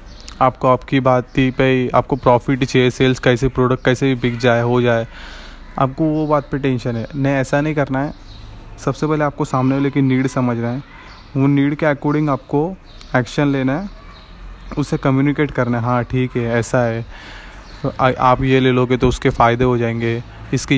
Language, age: Hindi, 20-39